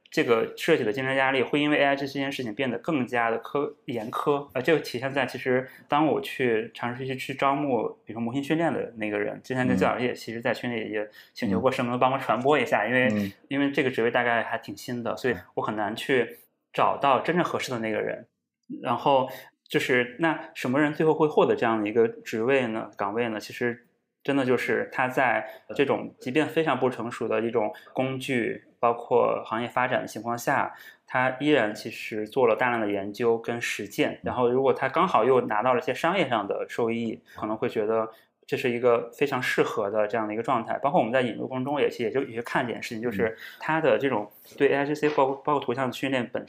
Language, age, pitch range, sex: Chinese, 20-39, 115-140 Hz, male